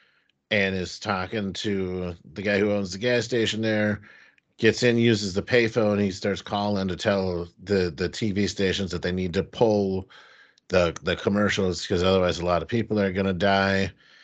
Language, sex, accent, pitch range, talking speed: English, male, American, 85-105 Hz, 190 wpm